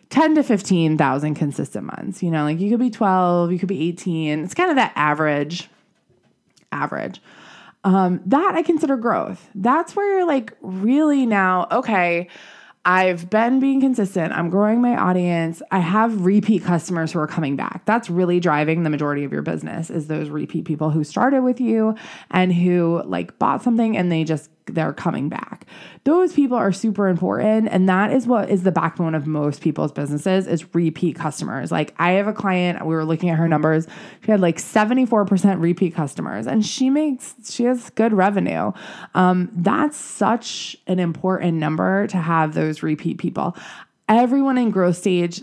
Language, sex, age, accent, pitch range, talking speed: English, female, 20-39, American, 165-235 Hz, 180 wpm